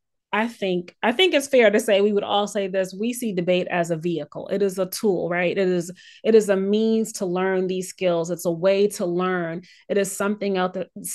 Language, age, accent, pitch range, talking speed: English, 30-49, American, 185-220 Hz, 230 wpm